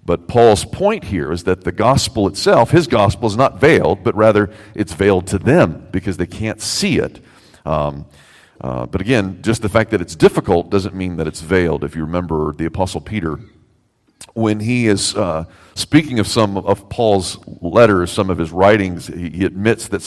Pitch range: 85-110 Hz